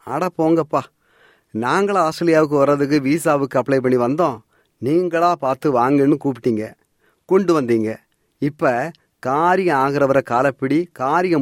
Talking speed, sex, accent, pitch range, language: 105 wpm, male, native, 120-160 Hz, Tamil